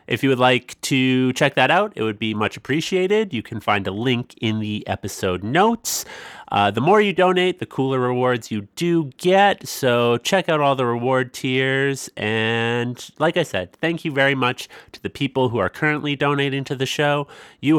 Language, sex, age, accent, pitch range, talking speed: English, male, 30-49, American, 110-150 Hz, 200 wpm